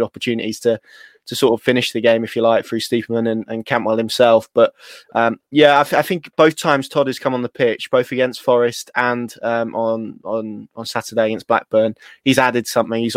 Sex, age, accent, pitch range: male, 20-39, British, 115-125 Hz